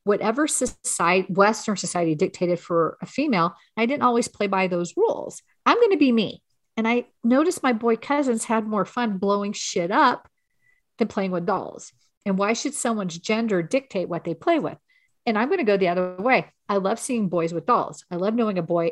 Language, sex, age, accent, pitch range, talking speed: English, female, 40-59, American, 175-225 Hz, 205 wpm